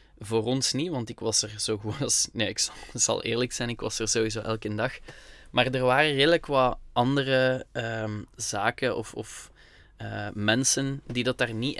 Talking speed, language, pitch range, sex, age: 190 wpm, Dutch, 110-130 Hz, male, 20-39